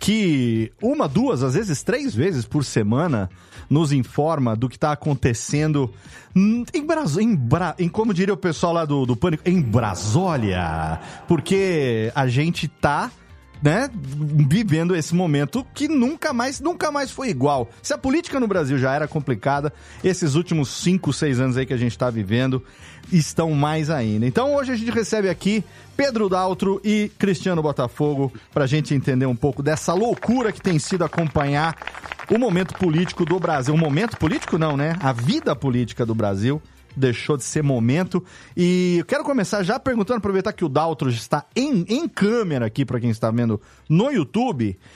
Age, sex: 30-49, male